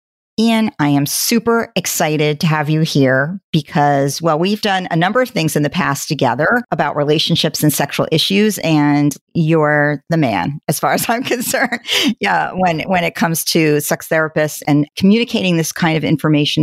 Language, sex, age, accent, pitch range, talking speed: English, female, 50-69, American, 145-185 Hz, 175 wpm